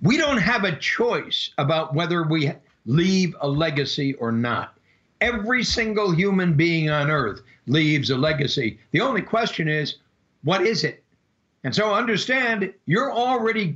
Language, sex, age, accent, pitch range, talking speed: English, male, 60-79, American, 150-225 Hz, 150 wpm